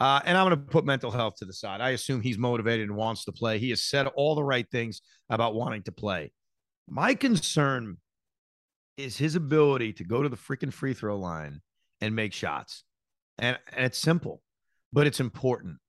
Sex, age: male, 40-59